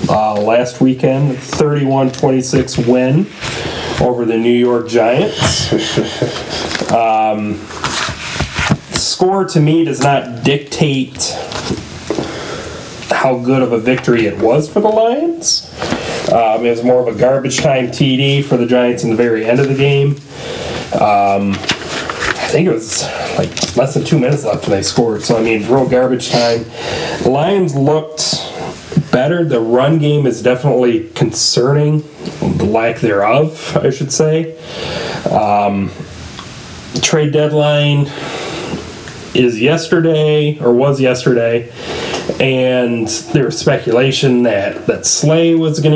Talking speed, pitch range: 130 wpm, 120-150 Hz